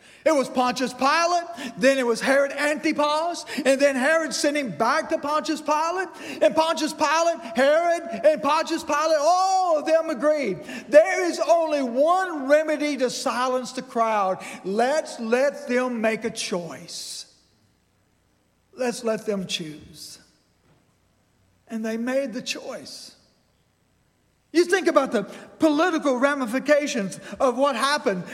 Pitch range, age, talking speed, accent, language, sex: 250-325 Hz, 50-69, 130 wpm, American, English, male